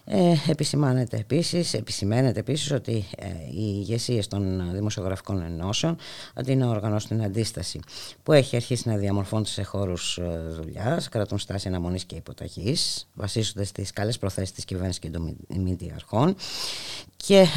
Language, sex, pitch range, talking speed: Greek, female, 95-125 Hz, 125 wpm